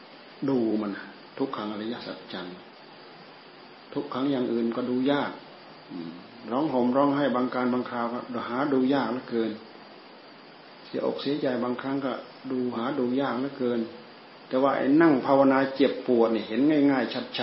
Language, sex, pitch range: Thai, male, 110-130 Hz